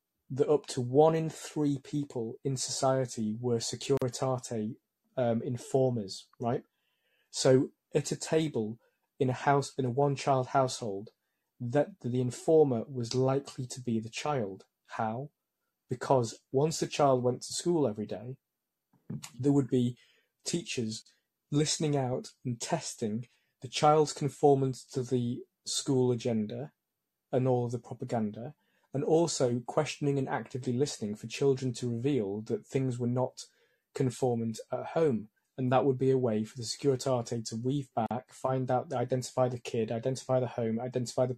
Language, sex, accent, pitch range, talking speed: English, male, British, 120-140 Hz, 150 wpm